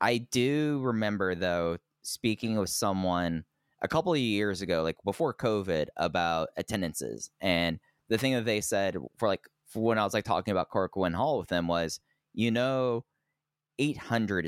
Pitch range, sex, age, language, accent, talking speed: 90-110 Hz, male, 20-39, English, American, 165 wpm